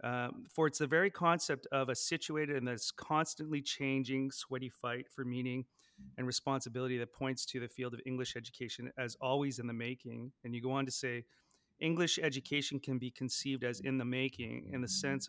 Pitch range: 115-135 Hz